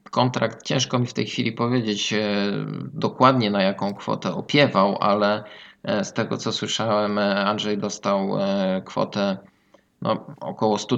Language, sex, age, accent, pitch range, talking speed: Polish, male, 20-39, native, 100-145 Hz, 120 wpm